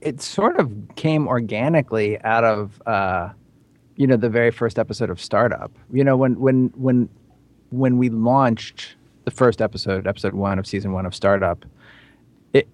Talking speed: 165 wpm